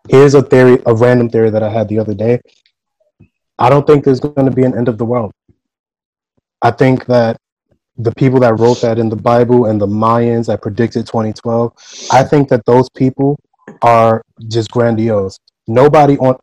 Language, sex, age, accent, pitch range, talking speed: English, male, 20-39, American, 110-130 Hz, 185 wpm